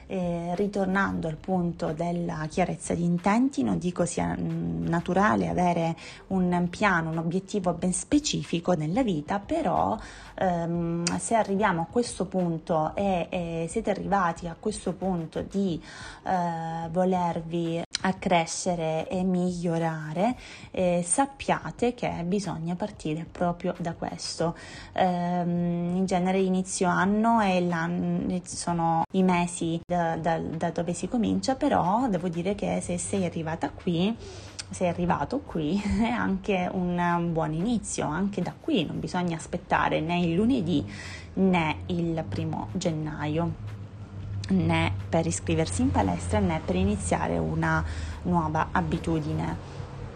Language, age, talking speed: Italian, 20-39, 120 wpm